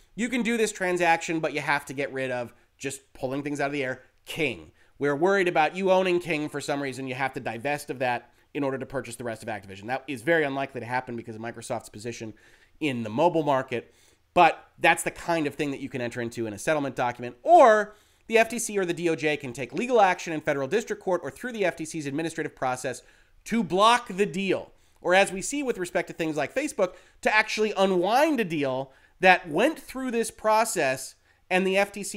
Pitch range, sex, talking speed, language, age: 135-185 Hz, male, 220 wpm, English, 30-49